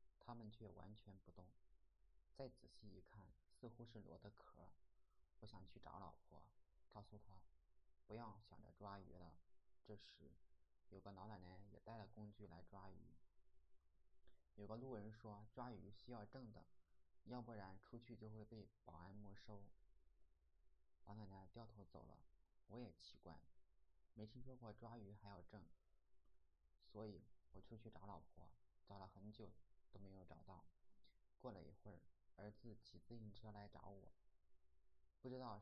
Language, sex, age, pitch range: Chinese, male, 20-39, 75-110 Hz